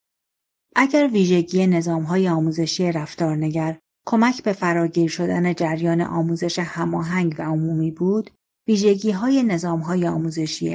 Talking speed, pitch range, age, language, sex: 100 wpm, 170-215 Hz, 40-59, Persian, female